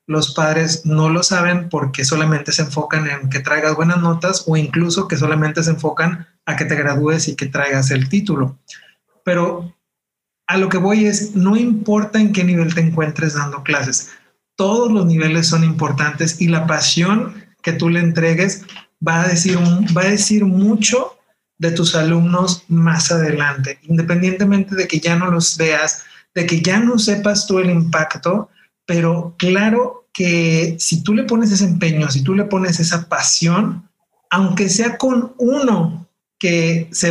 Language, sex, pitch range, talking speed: Spanish, male, 155-185 Hz, 170 wpm